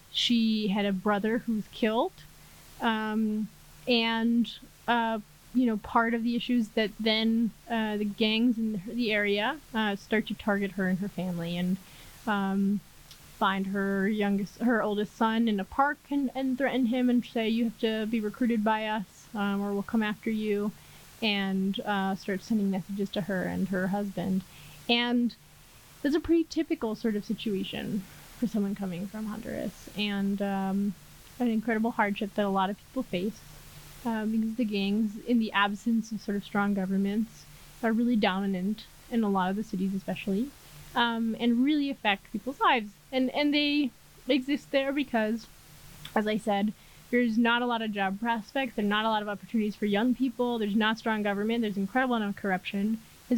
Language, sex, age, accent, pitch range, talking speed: English, female, 20-39, American, 200-235 Hz, 180 wpm